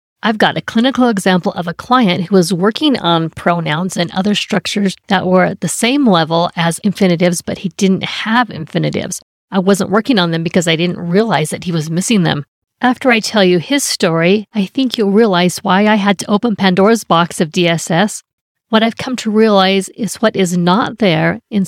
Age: 50-69